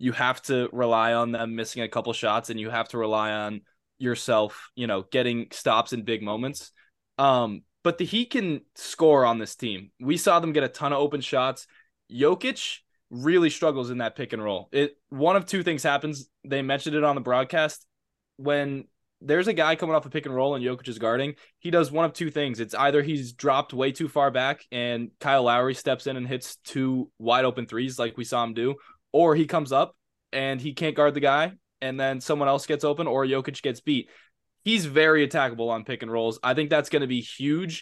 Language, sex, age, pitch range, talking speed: English, male, 10-29, 120-150 Hz, 220 wpm